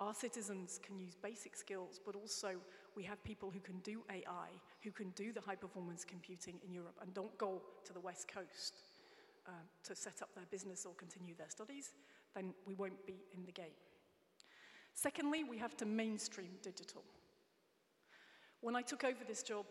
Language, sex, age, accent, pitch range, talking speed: English, female, 40-59, British, 190-220 Hz, 180 wpm